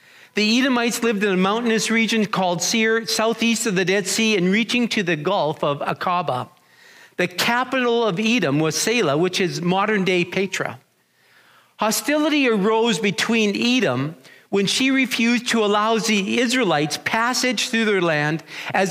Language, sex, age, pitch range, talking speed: English, male, 50-69, 185-235 Hz, 150 wpm